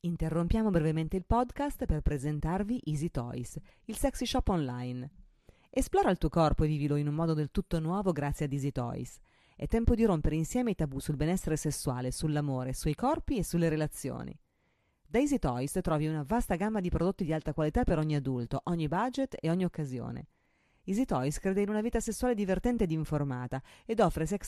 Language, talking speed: Italian, 190 wpm